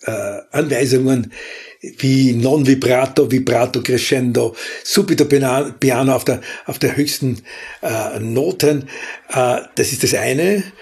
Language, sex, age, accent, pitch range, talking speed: German, male, 60-79, Austrian, 120-140 Hz, 120 wpm